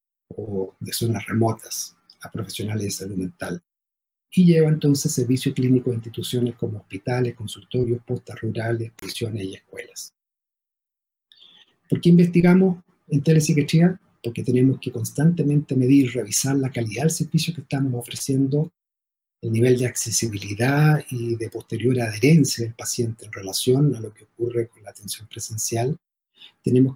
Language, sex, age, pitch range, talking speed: Spanish, male, 50-69, 115-150 Hz, 140 wpm